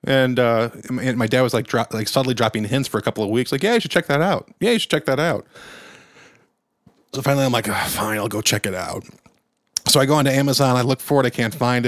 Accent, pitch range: American, 110-140 Hz